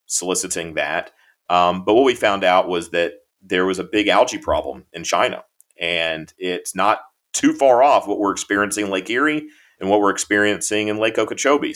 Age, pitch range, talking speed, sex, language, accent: 40-59, 90-105 Hz, 190 wpm, male, English, American